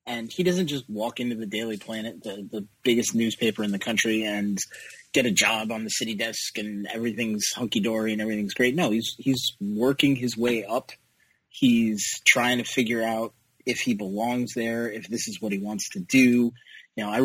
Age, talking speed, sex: 30-49, 200 wpm, male